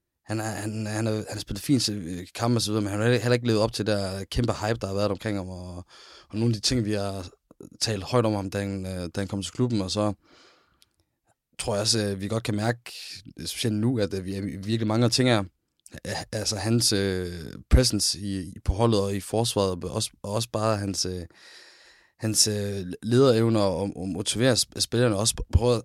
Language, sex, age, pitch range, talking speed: Danish, male, 20-39, 95-115 Hz, 210 wpm